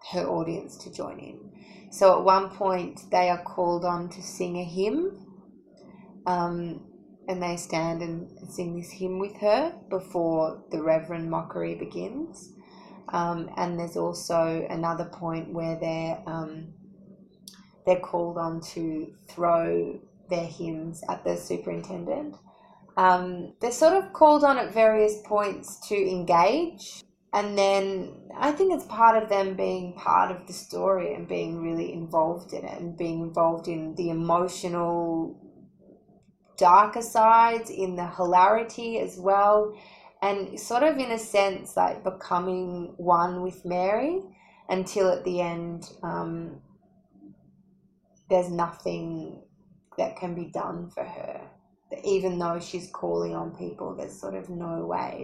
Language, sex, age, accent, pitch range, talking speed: English, female, 20-39, Australian, 170-195 Hz, 140 wpm